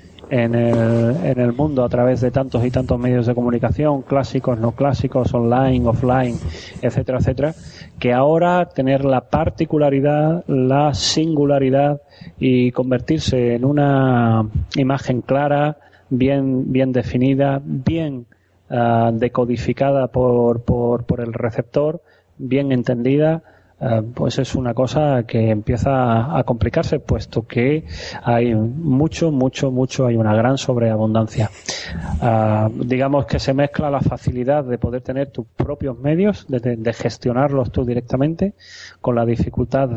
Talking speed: 130 wpm